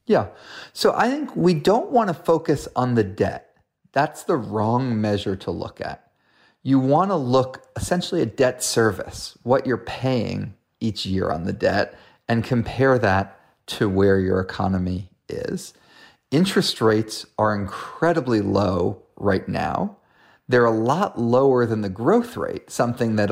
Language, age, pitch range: English, 40-59, 100-155 Hz